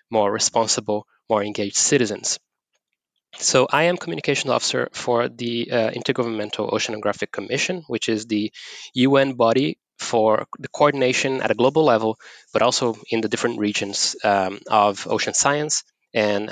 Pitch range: 105-125 Hz